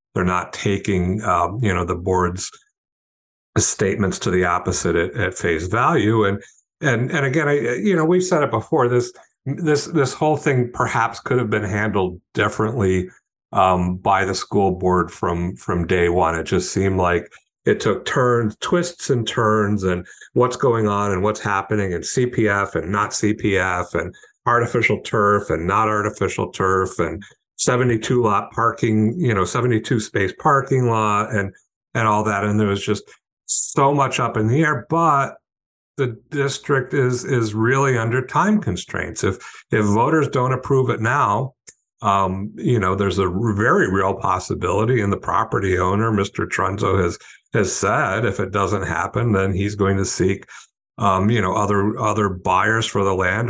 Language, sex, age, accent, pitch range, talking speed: English, male, 50-69, American, 95-125 Hz, 170 wpm